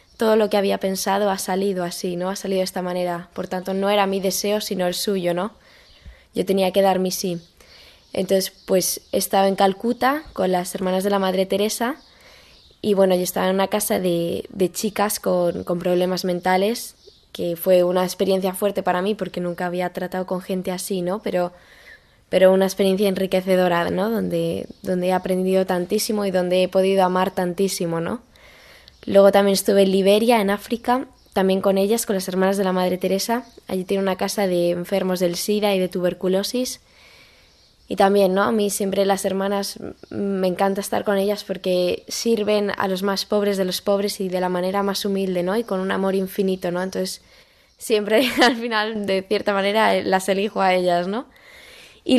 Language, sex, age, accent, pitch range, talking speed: Spanish, female, 10-29, Spanish, 185-205 Hz, 190 wpm